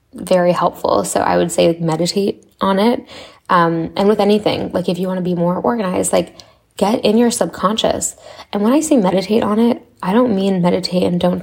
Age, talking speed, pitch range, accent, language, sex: 10-29, 205 wpm, 165-190 Hz, American, English, female